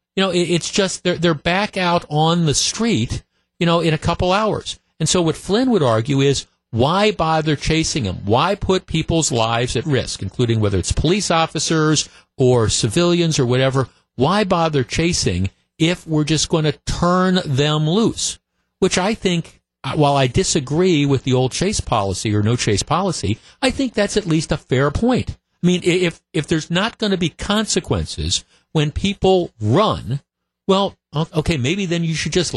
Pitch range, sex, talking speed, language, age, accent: 120-175 Hz, male, 175 wpm, English, 50-69, American